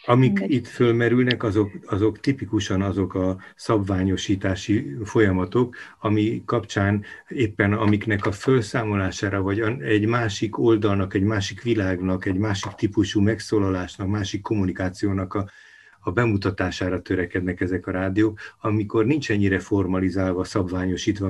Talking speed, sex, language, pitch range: 115 wpm, male, Hungarian, 95-110 Hz